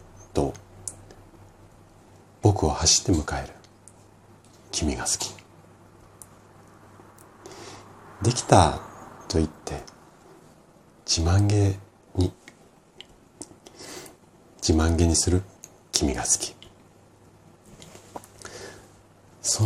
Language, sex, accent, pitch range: Japanese, male, native, 80-105 Hz